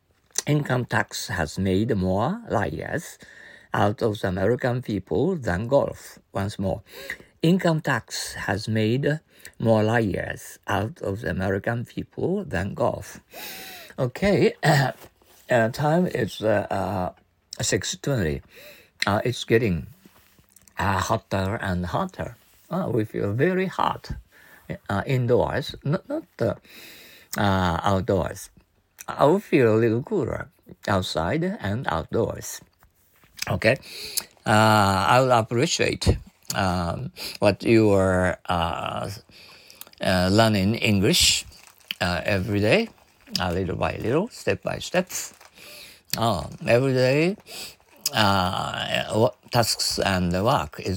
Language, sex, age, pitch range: Japanese, male, 60-79, 95-120 Hz